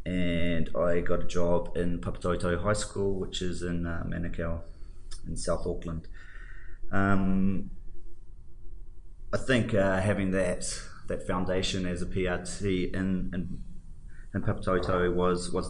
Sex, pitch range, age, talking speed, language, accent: male, 85-90 Hz, 20-39, 130 wpm, English, Australian